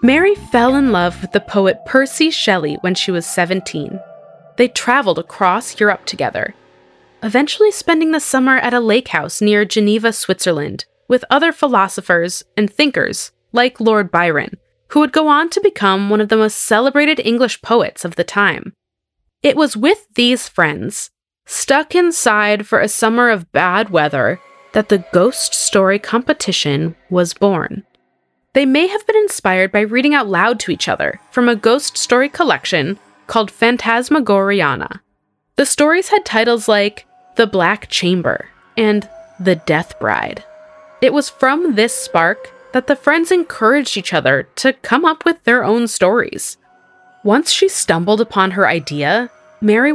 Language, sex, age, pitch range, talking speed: English, female, 20-39, 190-275 Hz, 155 wpm